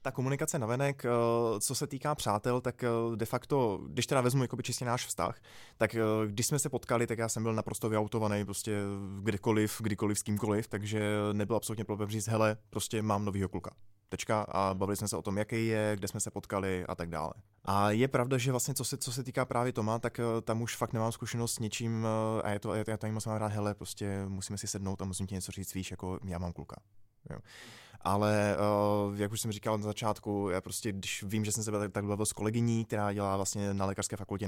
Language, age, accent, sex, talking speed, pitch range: Czech, 20-39, native, male, 220 wpm, 105-125 Hz